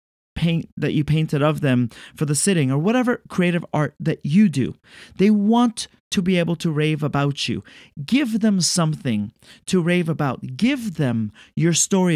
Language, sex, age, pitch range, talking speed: English, male, 30-49, 145-205 Hz, 175 wpm